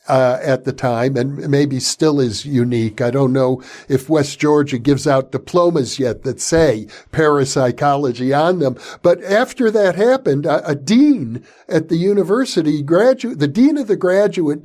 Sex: male